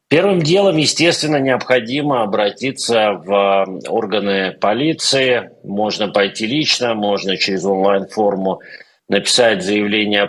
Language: Russian